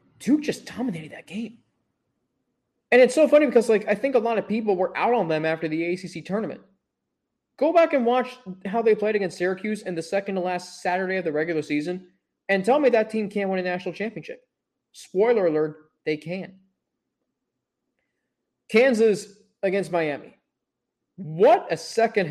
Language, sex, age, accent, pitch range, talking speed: English, male, 20-39, American, 180-235 Hz, 170 wpm